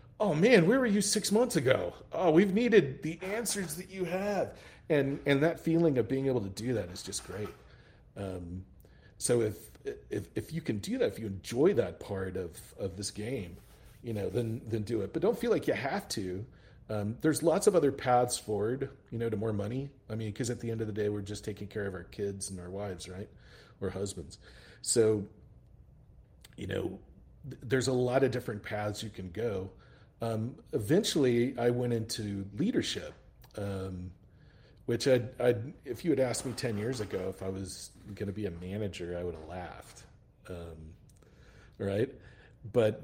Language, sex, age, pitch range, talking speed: English, male, 40-59, 100-130 Hz, 195 wpm